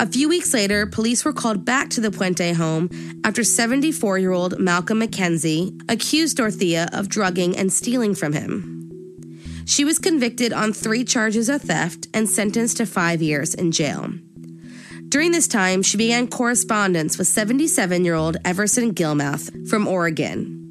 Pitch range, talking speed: 170-245 Hz, 150 wpm